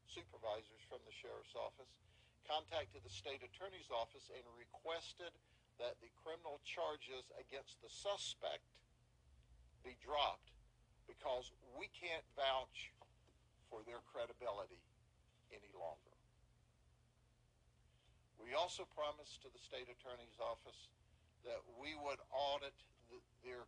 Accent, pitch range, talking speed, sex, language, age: American, 115-150 Hz, 110 wpm, male, English, 60-79